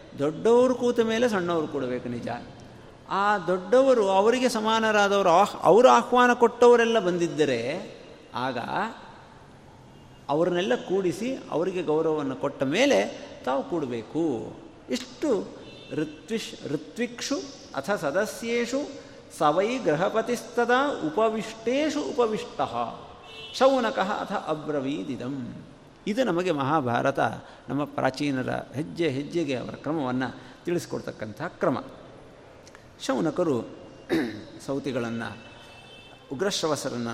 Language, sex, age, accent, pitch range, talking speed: Kannada, male, 50-69, native, 140-220 Hz, 80 wpm